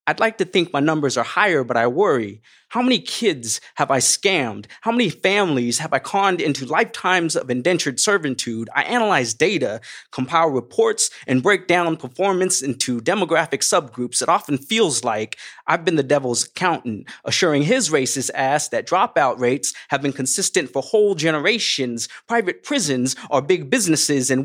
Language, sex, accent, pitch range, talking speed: English, male, American, 130-180 Hz, 165 wpm